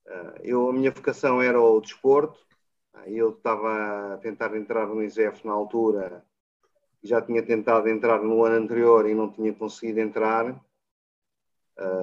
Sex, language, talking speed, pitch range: male, Portuguese, 150 wpm, 105-135 Hz